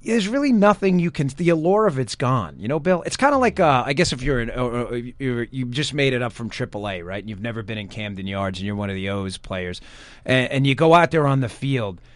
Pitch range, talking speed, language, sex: 115-155 Hz, 285 wpm, English, male